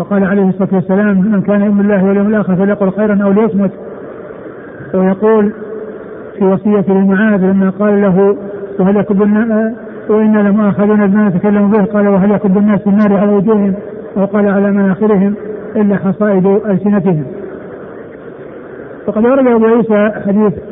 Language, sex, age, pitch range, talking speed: Arabic, male, 50-69, 200-220 Hz, 140 wpm